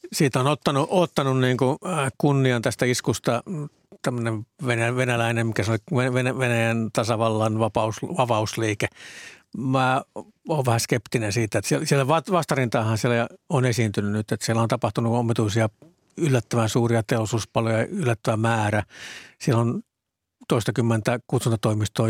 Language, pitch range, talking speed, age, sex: Finnish, 110-125 Hz, 115 wpm, 60-79, male